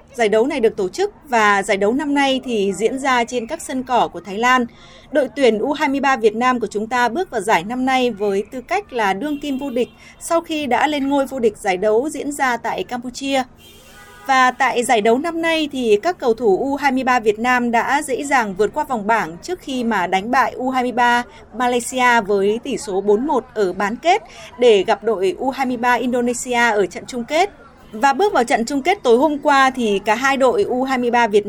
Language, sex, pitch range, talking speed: Vietnamese, female, 220-275 Hz, 215 wpm